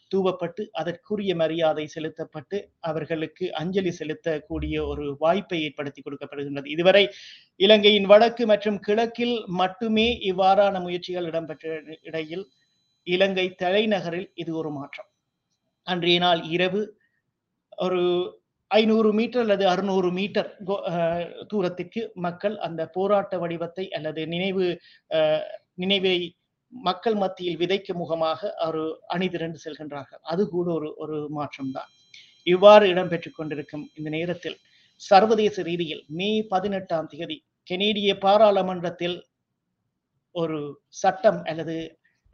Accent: native